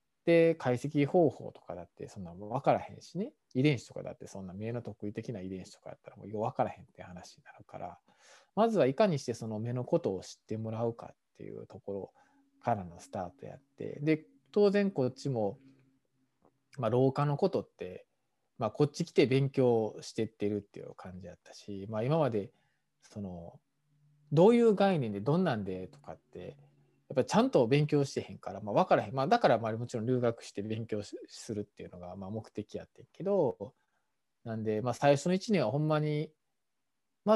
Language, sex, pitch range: Japanese, male, 105-155 Hz